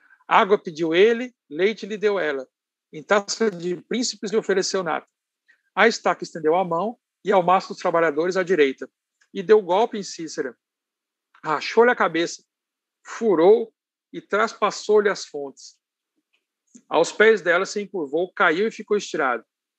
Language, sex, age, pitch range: Portuguese, male, 60-79, 155-215 Hz